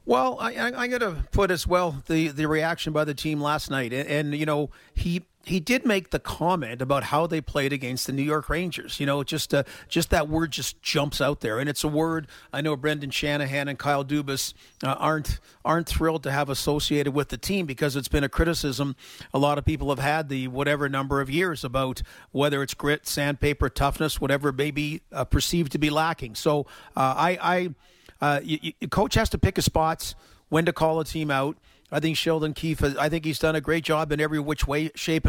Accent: American